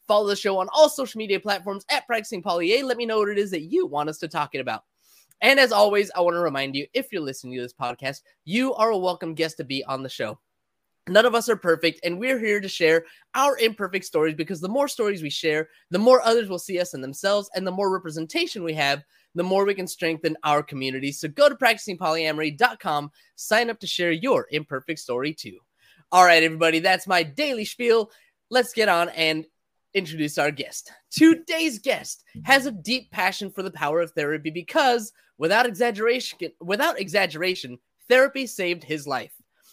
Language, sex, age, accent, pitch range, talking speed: English, male, 20-39, American, 165-230 Hz, 205 wpm